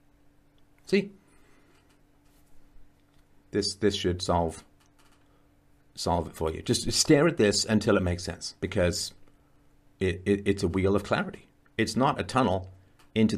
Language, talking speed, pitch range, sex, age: English, 135 wpm, 90-115 Hz, male, 50-69